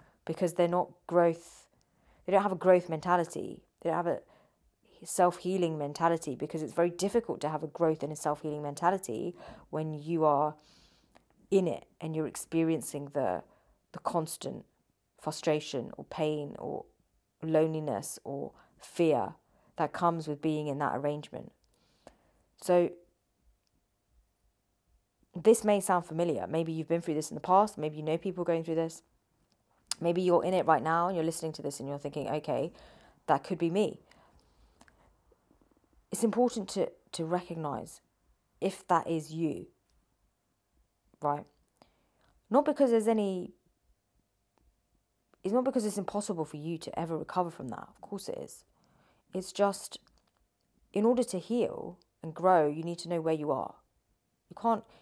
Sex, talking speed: female, 150 wpm